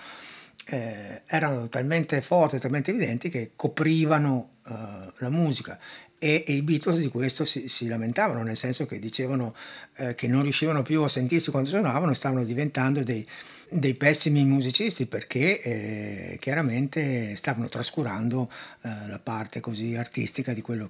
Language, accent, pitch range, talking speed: Italian, native, 115-140 Hz, 145 wpm